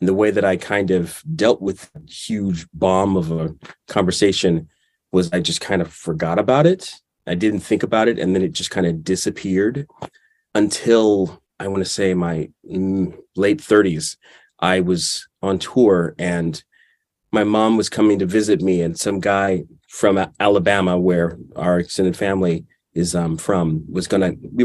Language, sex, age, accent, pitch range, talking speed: English, male, 30-49, American, 90-110 Hz, 165 wpm